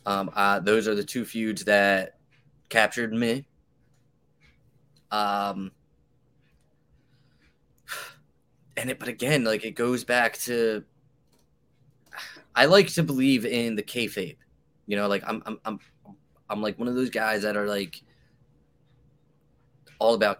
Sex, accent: male, American